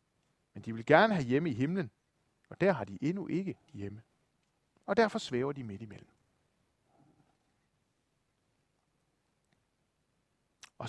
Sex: male